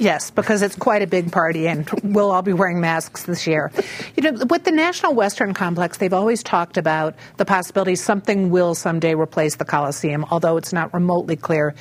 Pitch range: 160-205 Hz